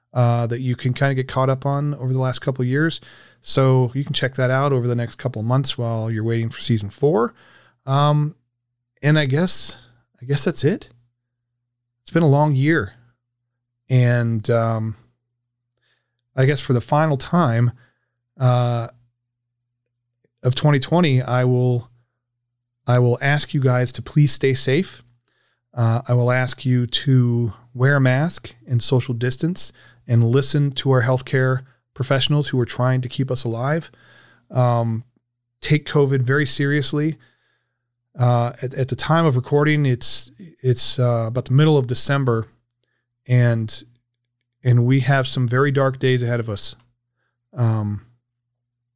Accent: American